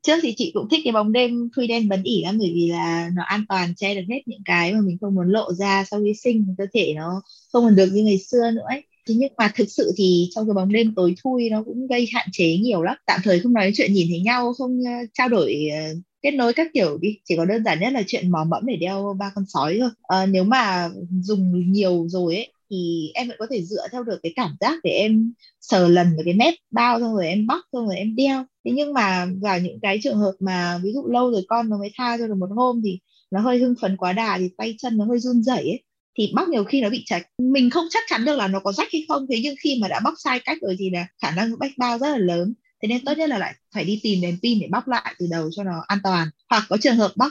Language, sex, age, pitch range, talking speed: Vietnamese, female, 20-39, 180-240 Hz, 285 wpm